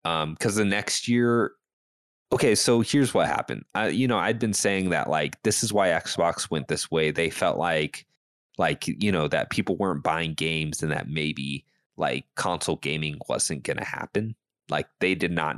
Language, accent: English, American